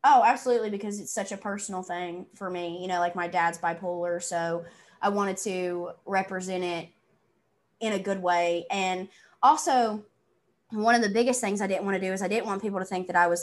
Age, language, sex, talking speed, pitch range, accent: 20-39, English, female, 215 wpm, 175-205 Hz, American